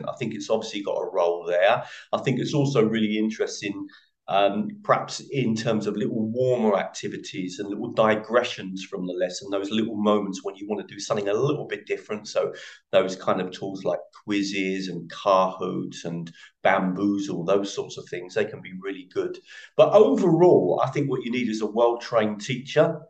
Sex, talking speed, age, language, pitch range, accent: male, 190 wpm, 40-59, English, 100-140 Hz, British